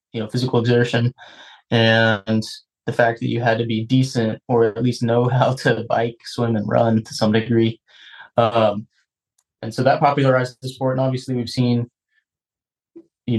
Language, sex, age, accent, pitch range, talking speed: English, male, 20-39, American, 115-130 Hz, 170 wpm